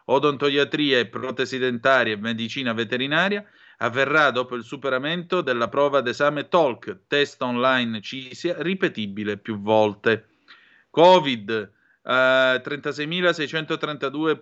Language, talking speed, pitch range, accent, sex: Italian, 100 wpm, 115-150 Hz, native, male